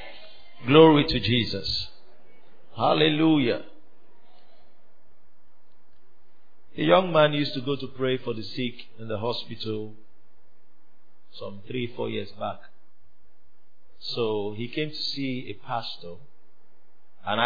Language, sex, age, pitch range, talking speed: English, male, 50-69, 105-135 Hz, 105 wpm